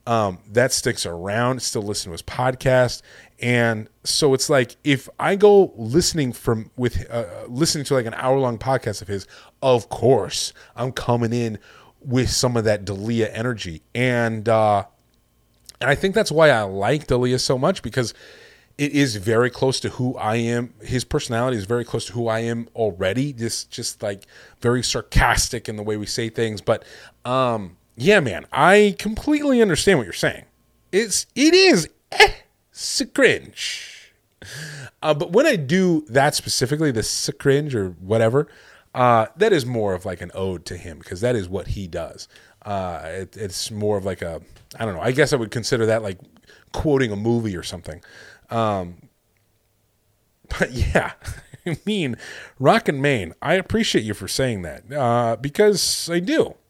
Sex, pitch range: male, 105-140 Hz